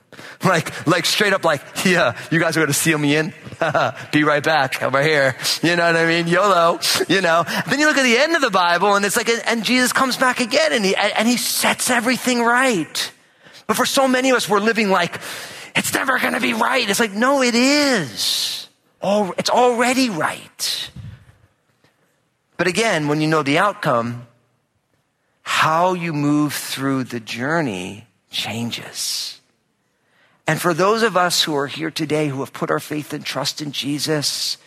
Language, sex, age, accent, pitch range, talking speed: English, male, 40-59, American, 135-195 Hz, 185 wpm